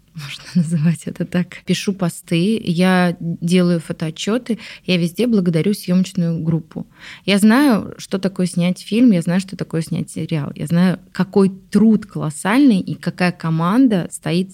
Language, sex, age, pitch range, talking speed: Russian, female, 20-39, 165-190 Hz, 145 wpm